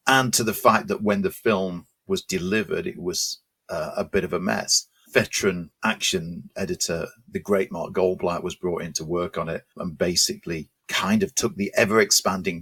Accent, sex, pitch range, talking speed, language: British, male, 90-125 Hz, 185 wpm, English